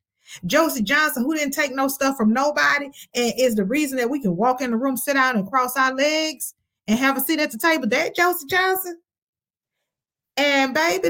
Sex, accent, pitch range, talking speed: female, American, 190-270 Hz, 205 wpm